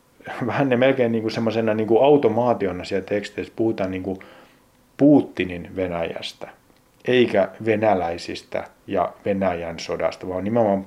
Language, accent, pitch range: Finnish, native, 100-125 Hz